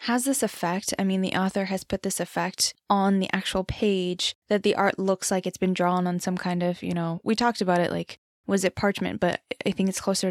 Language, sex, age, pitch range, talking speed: English, female, 10-29, 185-215 Hz, 245 wpm